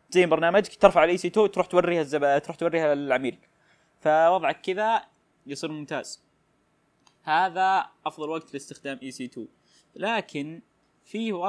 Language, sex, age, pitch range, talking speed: Arabic, male, 20-39, 135-165 Hz, 125 wpm